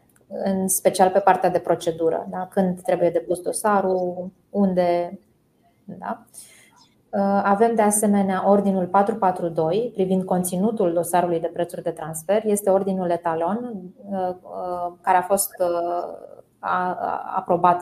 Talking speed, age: 110 wpm, 20-39